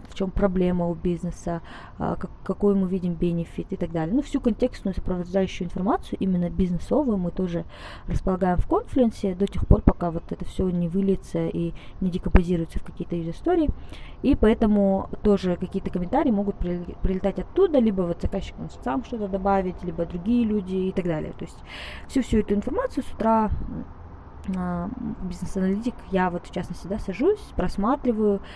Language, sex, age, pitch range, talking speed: Russian, female, 20-39, 175-210 Hz, 160 wpm